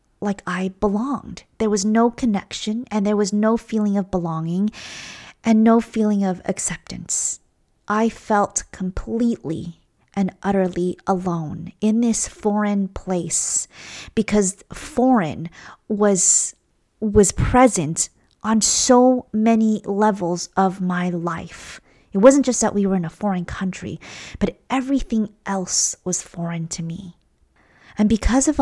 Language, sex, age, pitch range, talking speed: English, female, 30-49, 185-230 Hz, 130 wpm